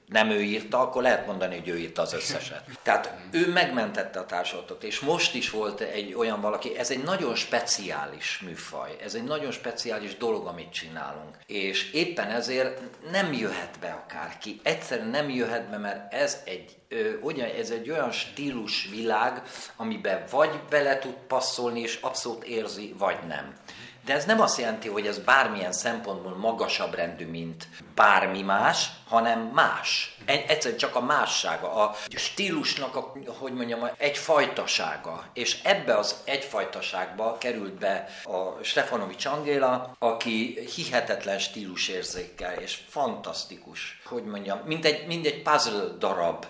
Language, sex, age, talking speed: Hungarian, male, 50-69, 140 wpm